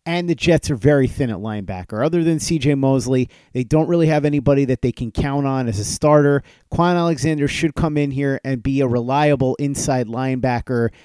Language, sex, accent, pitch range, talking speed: English, male, American, 130-155 Hz, 200 wpm